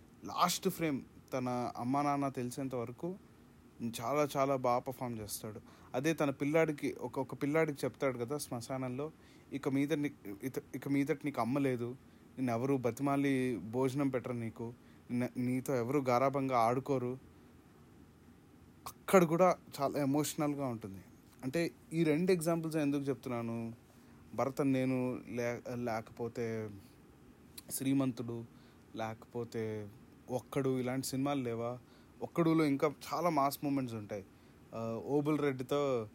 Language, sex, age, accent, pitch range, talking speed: Telugu, male, 30-49, native, 115-145 Hz, 110 wpm